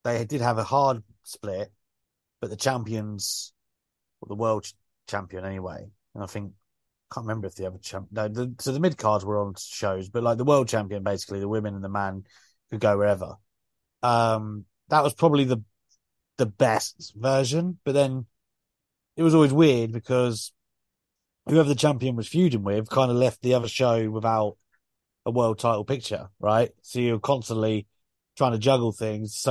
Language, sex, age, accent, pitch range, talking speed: English, male, 30-49, British, 105-140 Hz, 180 wpm